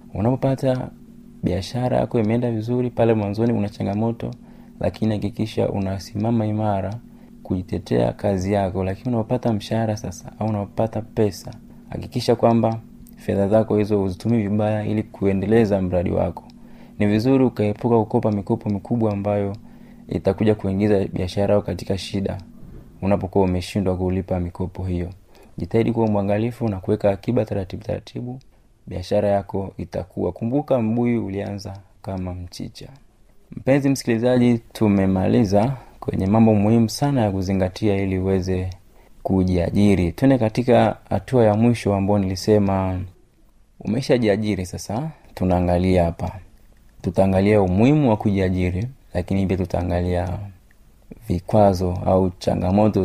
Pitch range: 95-115 Hz